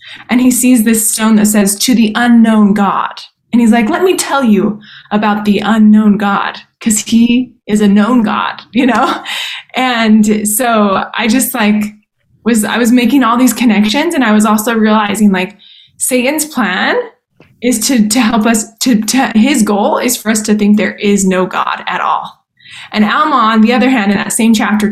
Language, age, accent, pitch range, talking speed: English, 20-39, American, 205-245 Hz, 195 wpm